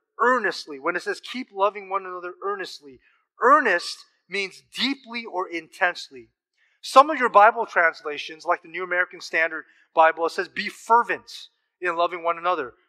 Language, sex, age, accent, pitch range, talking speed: English, male, 30-49, American, 170-240 Hz, 155 wpm